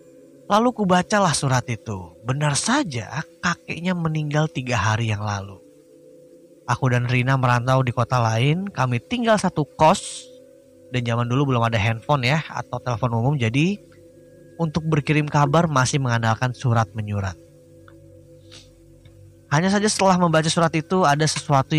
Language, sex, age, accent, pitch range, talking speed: Indonesian, male, 20-39, native, 115-160 Hz, 130 wpm